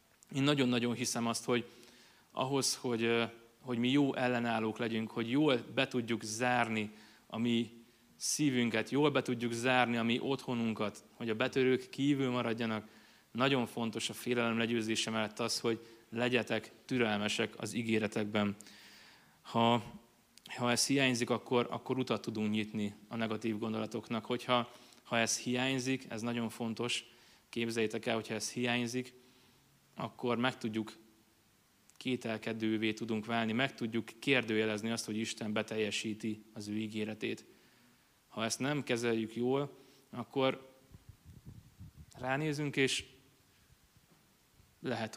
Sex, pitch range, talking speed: male, 110-125 Hz, 125 wpm